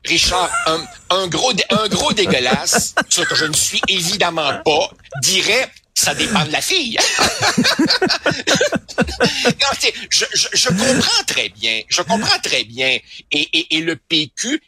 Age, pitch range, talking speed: 60-79, 145-230 Hz, 150 wpm